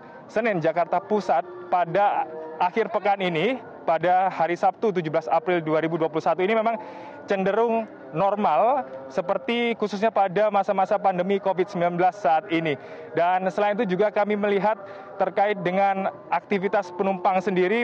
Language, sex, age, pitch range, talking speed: Indonesian, male, 20-39, 180-210 Hz, 120 wpm